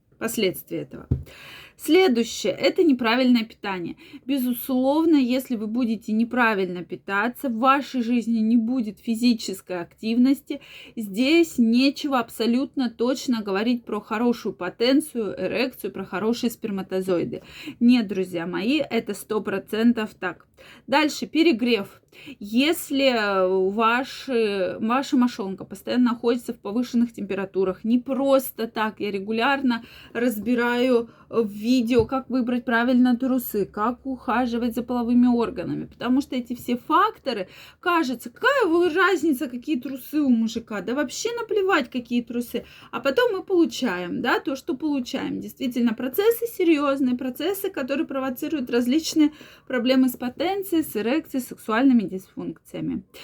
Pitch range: 225-275 Hz